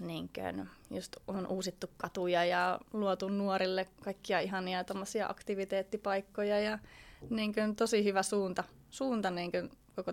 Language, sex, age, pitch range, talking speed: Finnish, female, 20-39, 175-215 Hz, 120 wpm